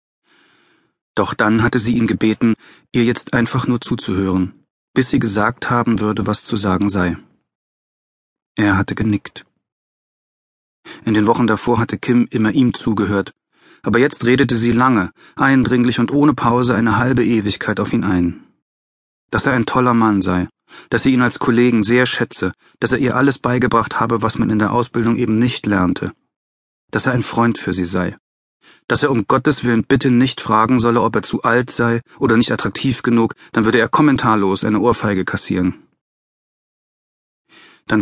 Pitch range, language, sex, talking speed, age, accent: 105-125 Hz, German, male, 170 wpm, 40-59, German